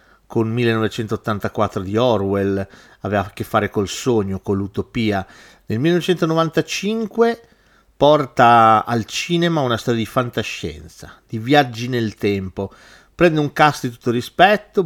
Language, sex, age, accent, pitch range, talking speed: Italian, male, 40-59, native, 105-155 Hz, 125 wpm